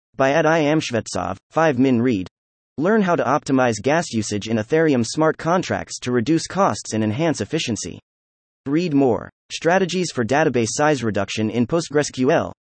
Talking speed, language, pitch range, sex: 150 wpm, English, 110-155 Hz, male